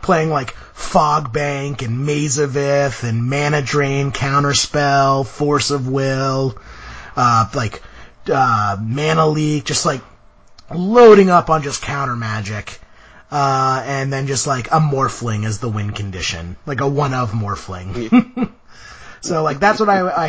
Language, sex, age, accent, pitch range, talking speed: English, male, 30-49, American, 120-150 Hz, 150 wpm